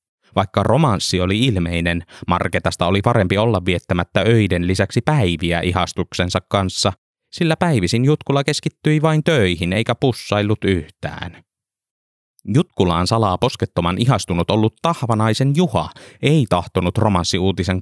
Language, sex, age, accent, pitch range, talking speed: Finnish, male, 20-39, native, 90-115 Hz, 110 wpm